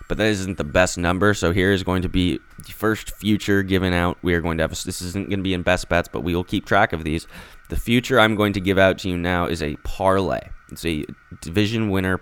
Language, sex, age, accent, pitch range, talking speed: English, male, 20-39, American, 85-105 Hz, 265 wpm